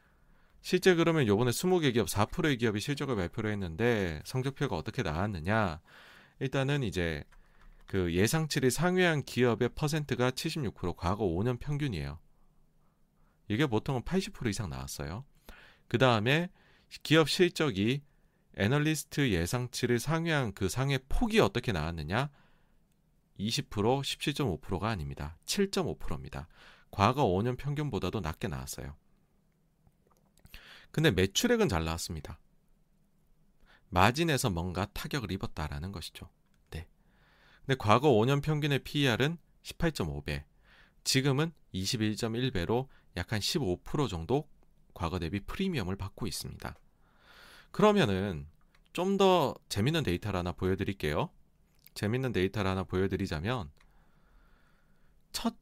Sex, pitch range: male, 95-155 Hz